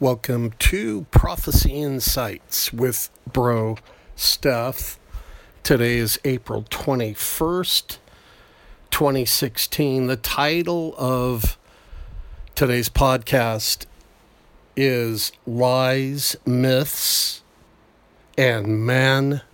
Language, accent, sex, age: English, American, male, 50-69